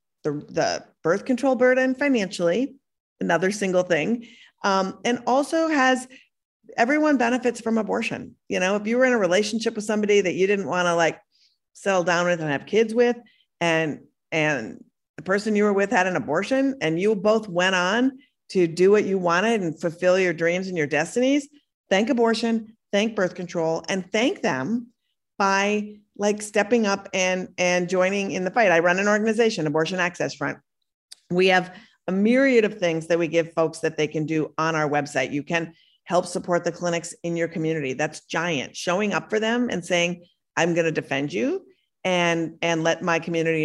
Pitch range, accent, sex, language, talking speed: 165-225 Hz, American, female, English, 185 wpm